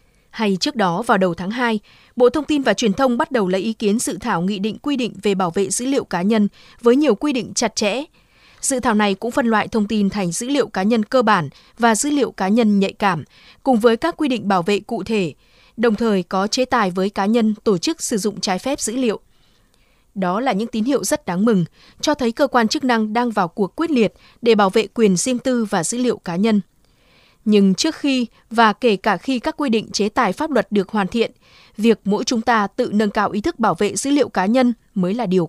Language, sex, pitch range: Vietnamese, female, 200-250 Hz